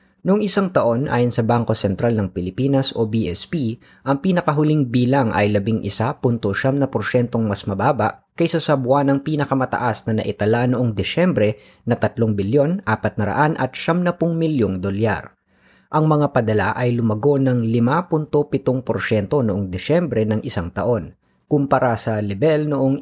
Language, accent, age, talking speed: Filipino, native, 20-39, 135 wpm